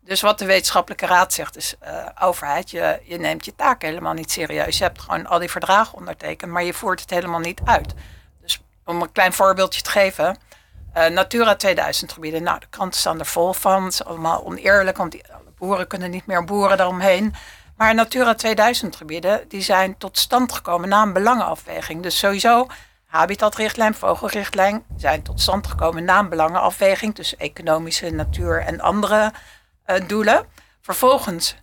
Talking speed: 170 wpm